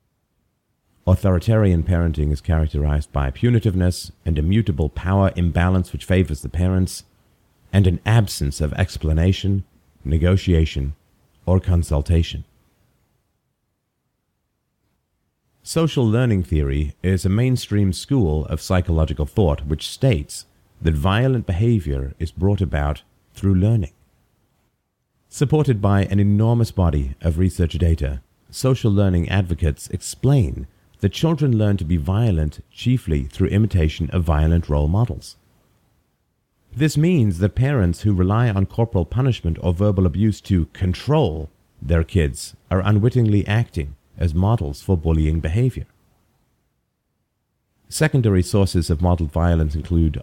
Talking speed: 115 wpm